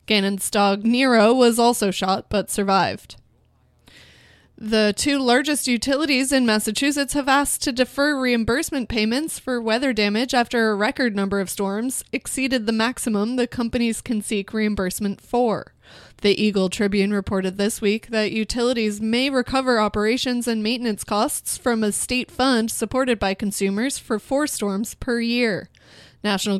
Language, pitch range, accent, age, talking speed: English, 210-250 Hz, American, 20-39, 145 wpm